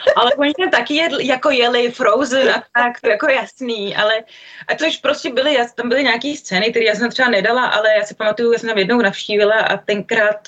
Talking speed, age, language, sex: 210 wpm, 20-39, Czech, female